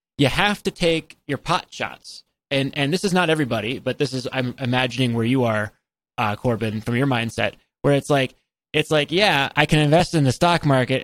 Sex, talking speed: male, 210 wpm